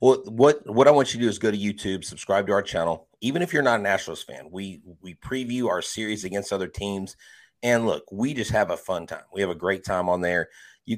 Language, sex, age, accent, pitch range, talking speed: English, male, 30-49, American, 95-110 Hz, 255 wpm